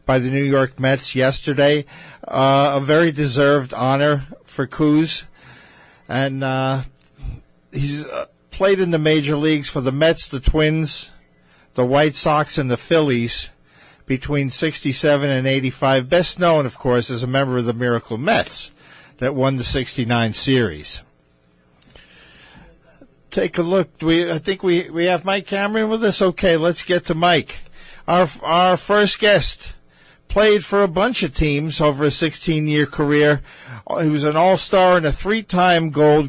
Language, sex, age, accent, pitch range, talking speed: English, male, 50-69, American, 135-175 Hz, 155 wpm